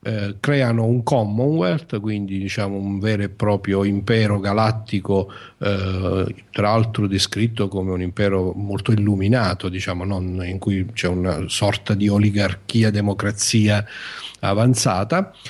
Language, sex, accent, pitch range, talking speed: Italian, male, native, 100-120 Hz, 125 wpm